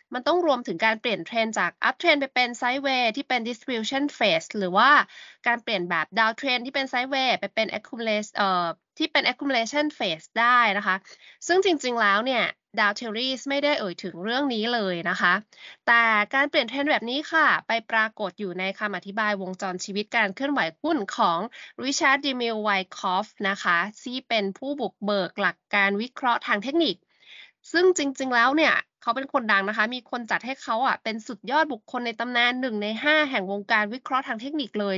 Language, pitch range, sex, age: Thai, 205-275 Hz, female, 20-39